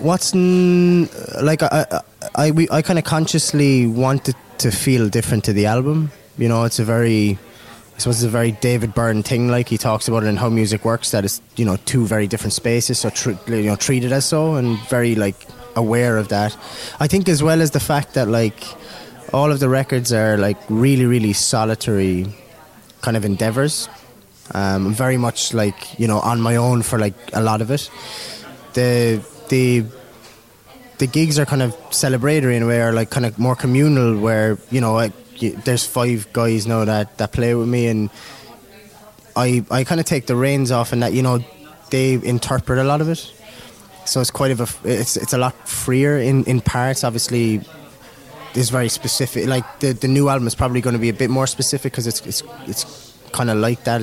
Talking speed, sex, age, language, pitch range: 205 wpm, male, 20-39, English, 115-135 Hz